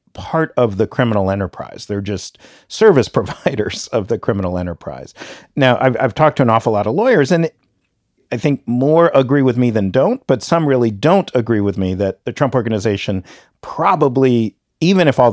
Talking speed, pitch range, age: 185 wpm, 105-135 Hz, 50-69